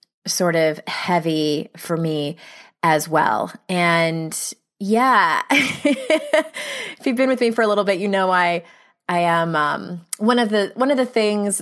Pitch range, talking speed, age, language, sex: 165-205 Hz, 160 wpm, 20-39, English, female